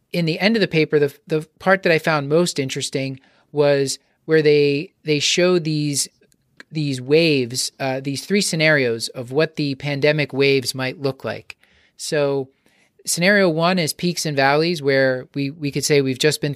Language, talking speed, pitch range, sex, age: English, 180 wpm, 135-155 Hz, male, 30-49